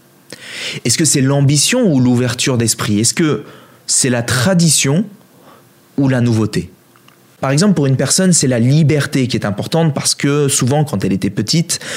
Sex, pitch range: male, 115-150 Hz